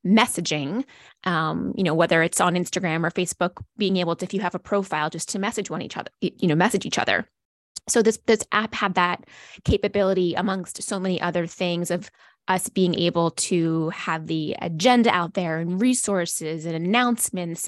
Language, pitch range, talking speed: English, 170-210 Hz, 185 wpm